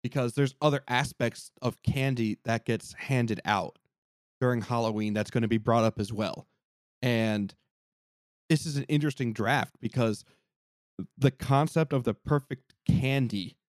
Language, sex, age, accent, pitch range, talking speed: English, male, 30-49, American, 115-150 Hz, 145 wpm